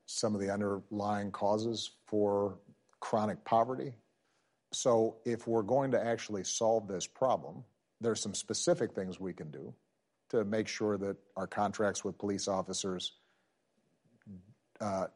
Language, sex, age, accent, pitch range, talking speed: English, male, 50-69, American, 95-110 Hz, 140 wpm